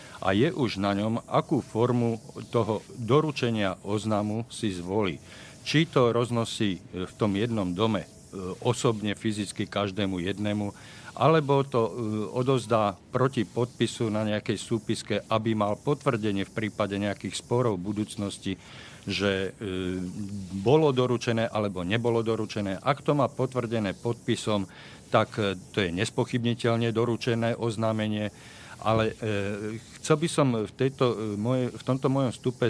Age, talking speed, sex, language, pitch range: 50-69, 125 wpm, male, Slovak, 105-125 Hz